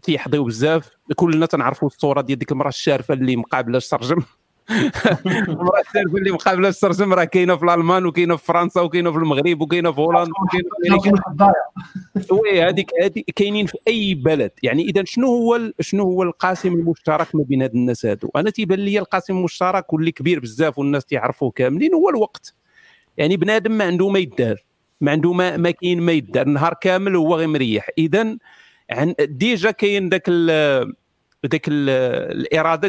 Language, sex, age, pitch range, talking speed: Arabic, male, 40-59, 150-195 Hz, 170 wpm